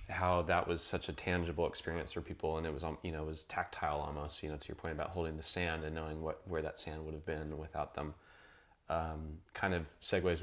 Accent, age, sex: American, 20-39, male